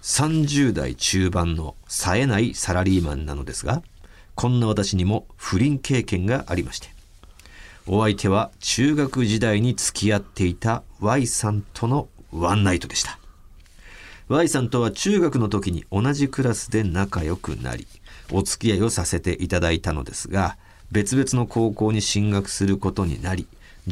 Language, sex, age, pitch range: Japanese, male, 50-69, 90-115 Hz